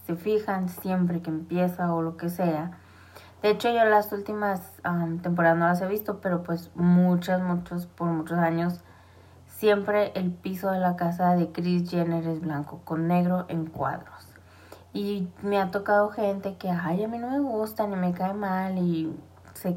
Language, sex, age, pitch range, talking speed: Spanish, female, 20-39, 145-185 Hz, 180 wpm